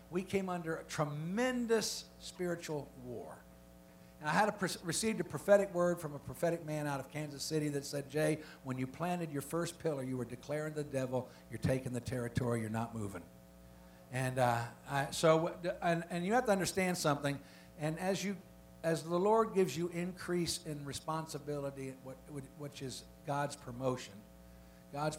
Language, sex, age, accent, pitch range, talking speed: English, male, 60-79, American, 120-170 Hz, 170 wpm